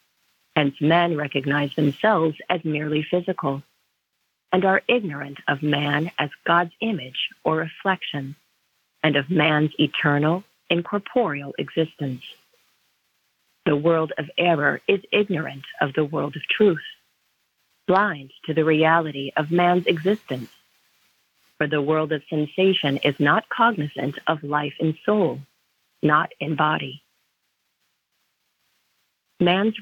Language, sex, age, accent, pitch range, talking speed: English, female, 40-59, American, 145-185 Hz, 115 wpm